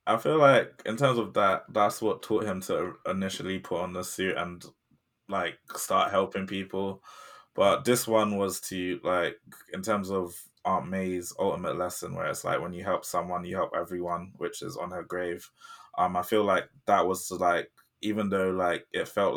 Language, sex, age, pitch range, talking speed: English, male, 20-39, 95-110 Hz, 195 wpm